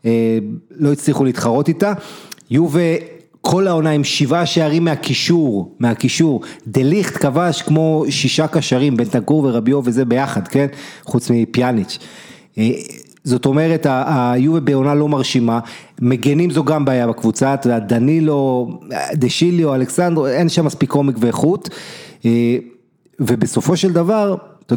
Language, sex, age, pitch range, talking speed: Hebrew, male, 30-49, 120-155 Hz, 120 wpm